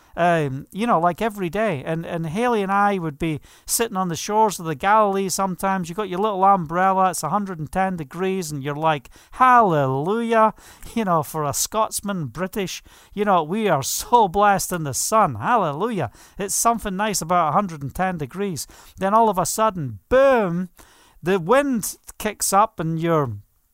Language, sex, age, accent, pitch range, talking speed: English, male, 40-59, British, 160-210 Hz, 170 wpm